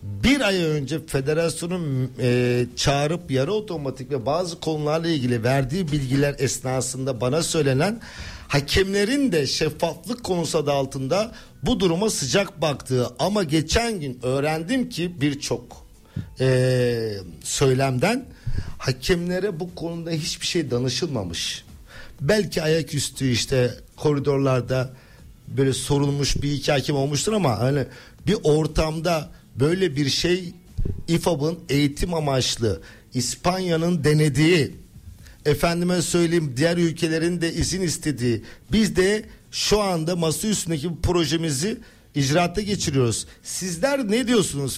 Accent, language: native, Turkish